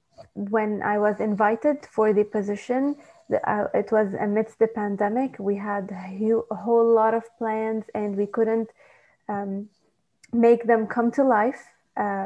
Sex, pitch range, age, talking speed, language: female, 210-230 Hz, 20-39, 140 wpm, English